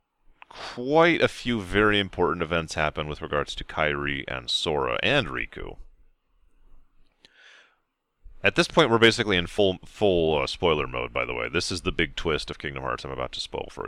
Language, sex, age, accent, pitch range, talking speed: English, male, 30-49, American, 80-105 Hz, 180 wpm